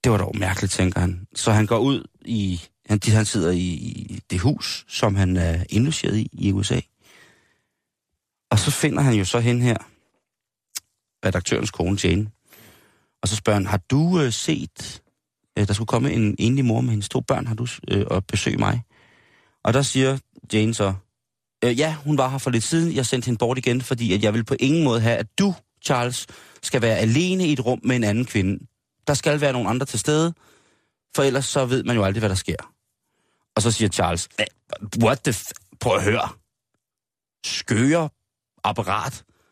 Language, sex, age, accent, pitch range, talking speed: Danish, male, 30-49, native, 105-135 Hz, 190 wpm